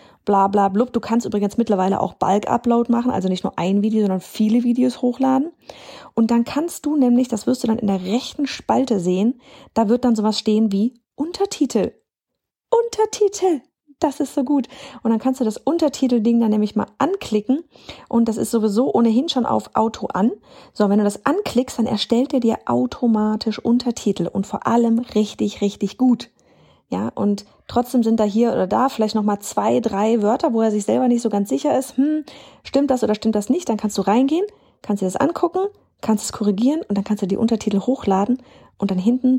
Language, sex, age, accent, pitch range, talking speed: German, female, 30-49, German, 205-255 Hz, 200 wpm